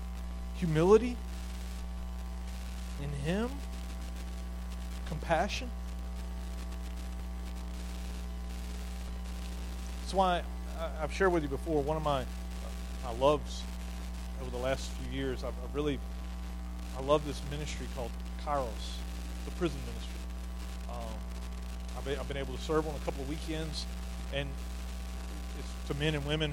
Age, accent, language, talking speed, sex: 40-59, American, English, 115 wpm, male